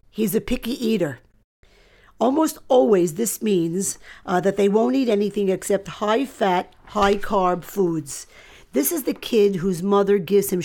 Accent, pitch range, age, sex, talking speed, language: American, 185-235 Hz, 50-69, female, 145 wpm, English